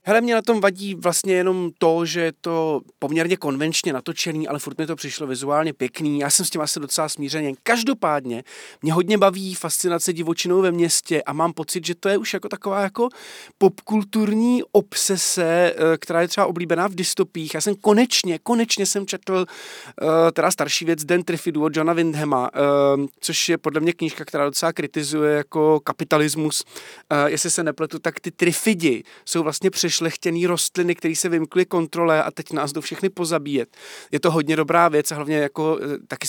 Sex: male